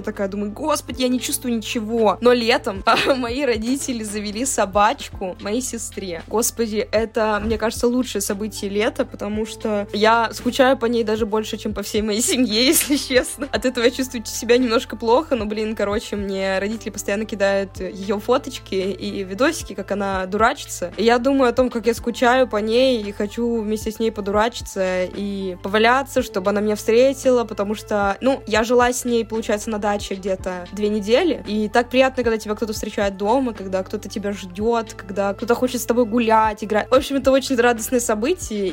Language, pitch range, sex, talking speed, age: Russian, 205-240 Hz, female, 180 wpm, 20-39